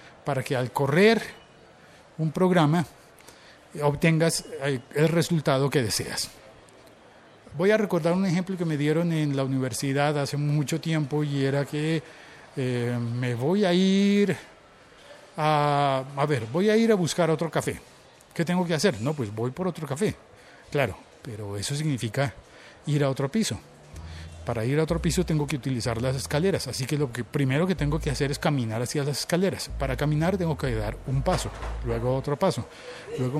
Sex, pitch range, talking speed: male, 125-160 Hz, 170 wpm